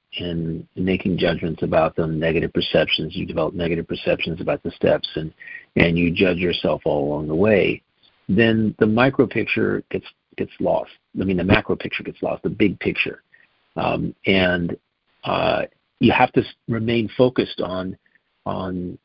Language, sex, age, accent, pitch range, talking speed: English, male, 50-69, American, 85-100 Hz, 160 wpm